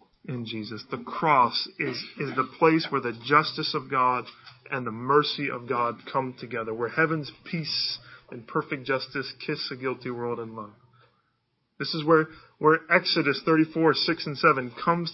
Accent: American